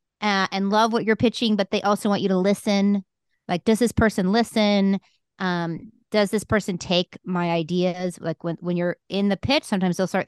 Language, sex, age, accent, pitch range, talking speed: English, female, 30-49, American, 170-210 Hz, 205 wpm